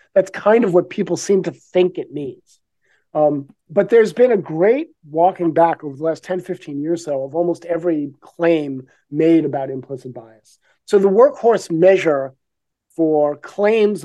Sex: male